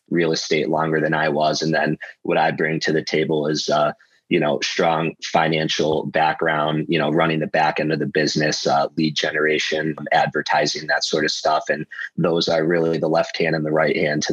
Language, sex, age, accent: English, male, 30-49, American